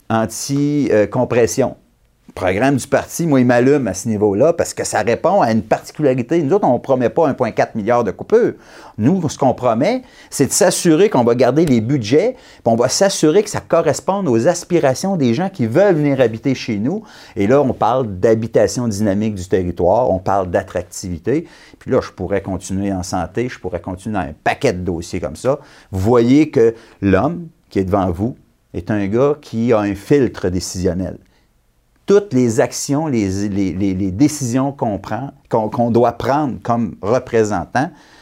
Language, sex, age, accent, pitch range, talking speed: French, male, 40-59, Canadian, 100-155 Hz, 180 wpm